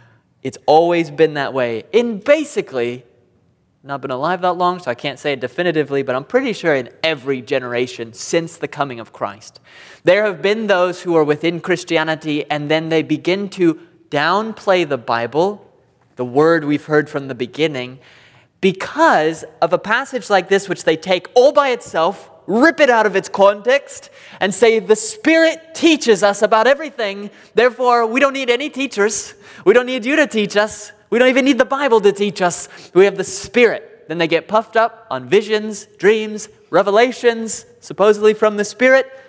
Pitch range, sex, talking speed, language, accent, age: 145-215 Hz, male, 180 wpm, English, American, 20-39